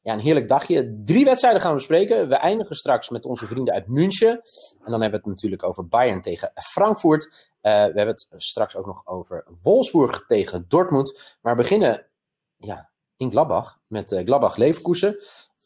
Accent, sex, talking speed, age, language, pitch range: Dutch, male, 180 wpm, 30-49, Dutch, 120-185 Hz